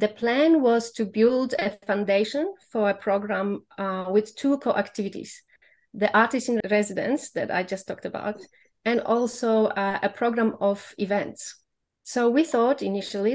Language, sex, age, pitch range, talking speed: English, female, 30-49, 200-245 Hz, 155 wpm